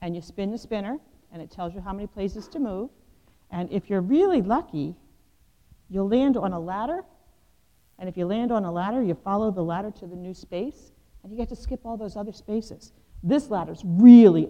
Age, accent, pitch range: 50-69, American, 185-255 Hz